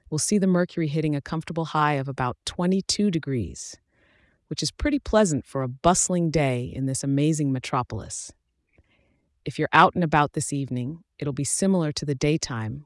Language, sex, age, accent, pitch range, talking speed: English, female, 30-49, American, 130-165 Hz, 175 wpm